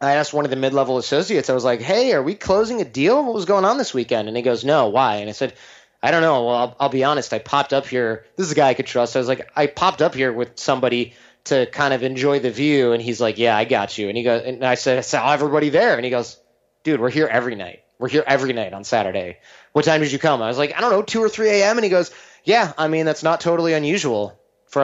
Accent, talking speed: American, 285 wpm